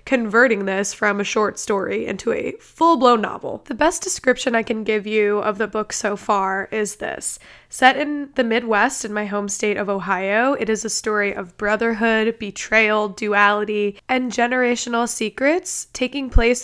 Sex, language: female, English